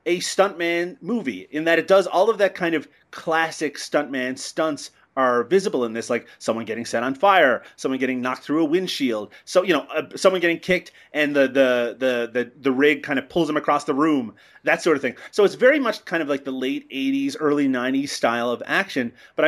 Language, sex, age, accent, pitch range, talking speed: English, male, 30-49, American, 125-170 Hz, 220 wpm